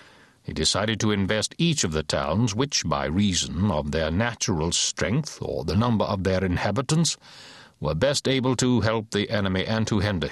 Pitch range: 100-130 Hz